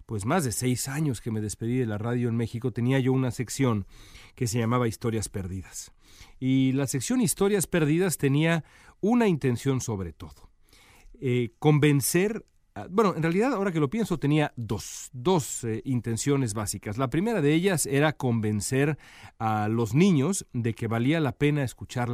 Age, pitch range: 40-59, 105-140 Hz